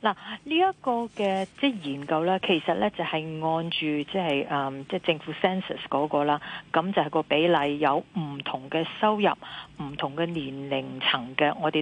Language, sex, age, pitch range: Chinese, female, 40-59, 150-195 Hz